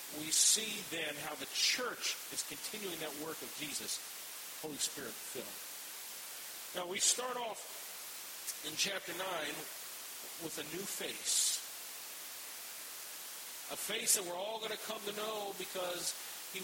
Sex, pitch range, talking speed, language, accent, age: male, 170-195 Hz, 135 wpm, English, American, 50-69